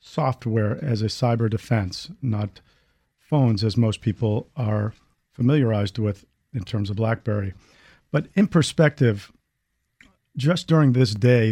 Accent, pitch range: American, 110-130 Hz